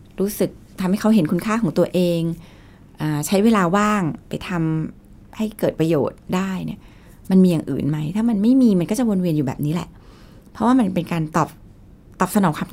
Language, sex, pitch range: Thai, female, 150-205 Hz